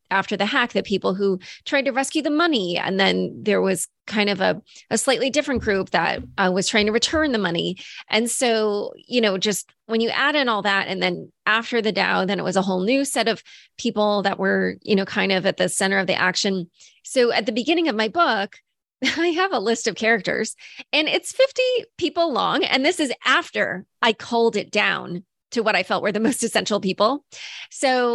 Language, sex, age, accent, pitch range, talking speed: English, female, 20-39, American, 190-235 Hz, 220 wpm